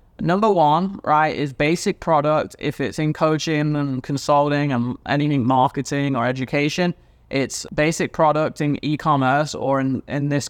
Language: English